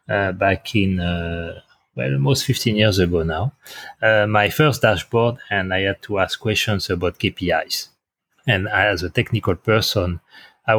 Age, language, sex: 30-49, English, male